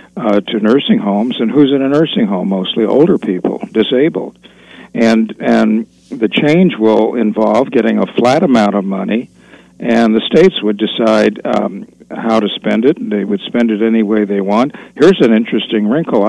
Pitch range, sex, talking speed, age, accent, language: 110-130 Hz, male, 180 wpm, 60-79, American, English